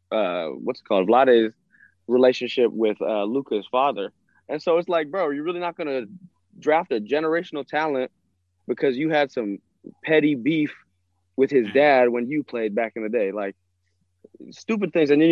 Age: 20-39